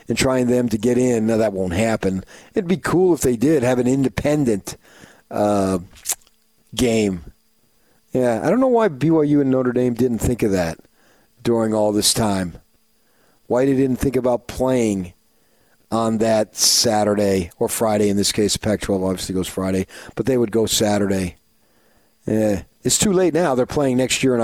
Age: 40-59